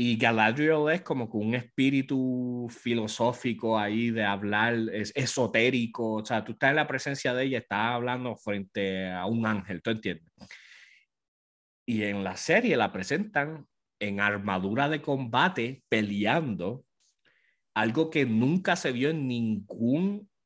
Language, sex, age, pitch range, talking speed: English, male, 30-49, 100-130 Hz, 140 wpm